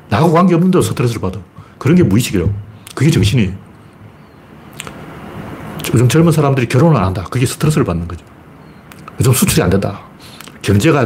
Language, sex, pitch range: Korean, male, 105-155 Hz